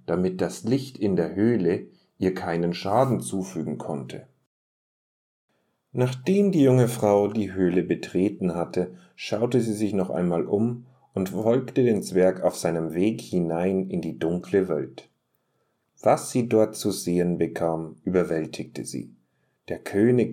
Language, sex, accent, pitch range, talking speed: German, male, German, 90-110 Hz, 140 wpm